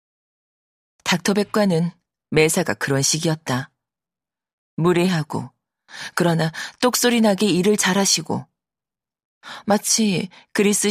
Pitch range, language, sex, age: 160-205 Hz, Korean, female, 40-59